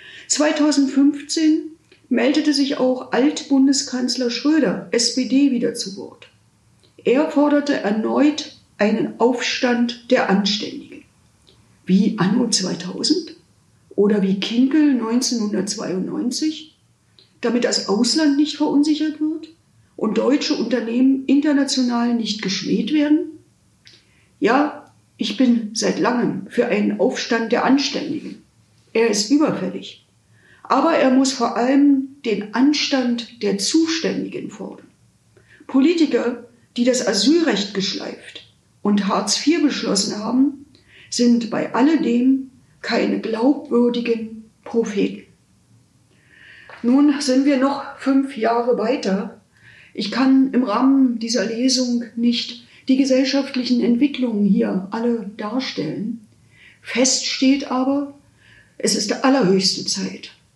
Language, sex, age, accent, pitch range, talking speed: German, female, 50-69, German, 230-280 Hz, 105 wpm